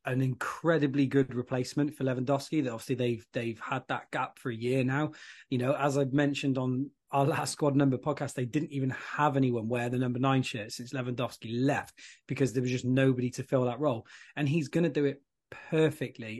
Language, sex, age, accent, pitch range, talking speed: English, male, 20-39, British, 130-155 Hz, 210 wpm